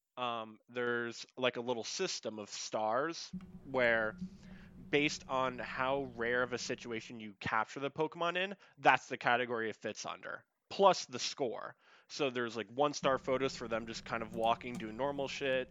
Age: 20-39